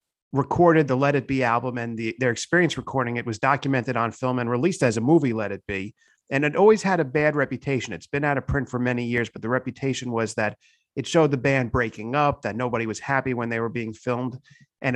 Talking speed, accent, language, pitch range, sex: 240 wpm, American, English, 120-140 Hz, male